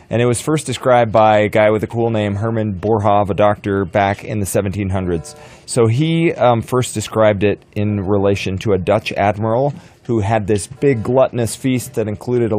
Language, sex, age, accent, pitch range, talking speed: English, male, 30-49, American, 95-120 Hz, 195 wpm